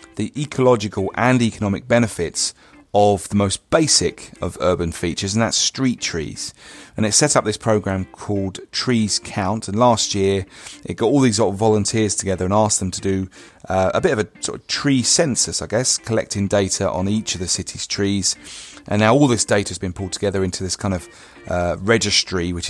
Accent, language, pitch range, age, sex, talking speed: British, English, 95-115 Hz, 30-49, male, 195 wpm